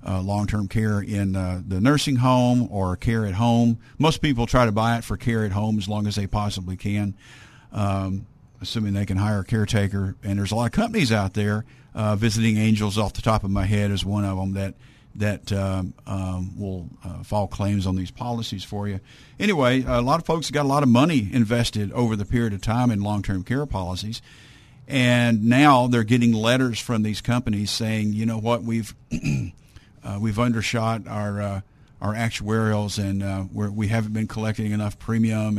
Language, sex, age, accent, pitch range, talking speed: English, male, 50-69, American, 100-120 Hz, 200 wpm